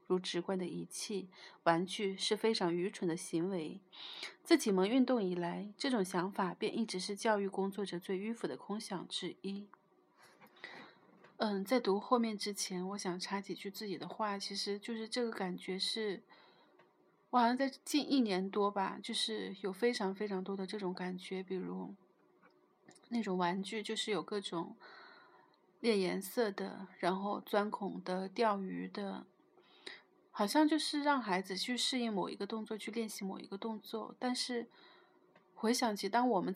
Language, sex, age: Chinese, female, 30-49